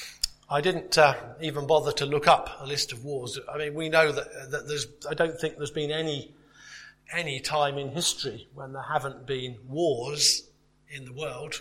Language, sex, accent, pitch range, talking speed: English, male, British, 140-170 Hz, 190 wpm